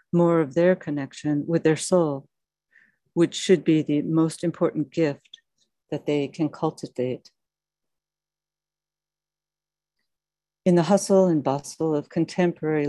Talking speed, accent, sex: 115 wpm, American, female